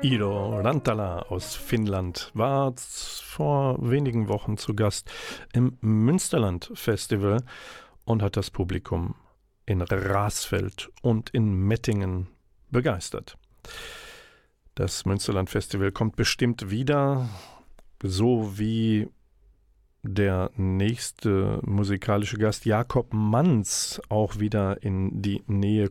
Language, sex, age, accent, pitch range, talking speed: German, male, 50-69, German, 95-120 Hz, 95 wpm